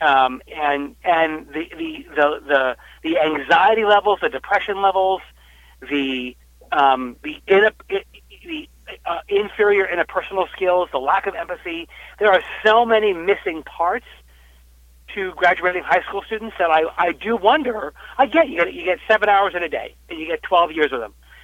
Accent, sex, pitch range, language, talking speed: American, male, 145-220 Hz, English, 160 wpm